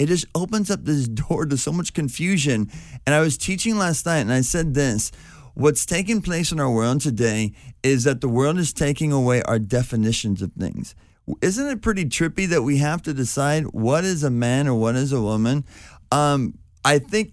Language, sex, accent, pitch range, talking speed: English, male, American, 115-150 Hz, 205 wpm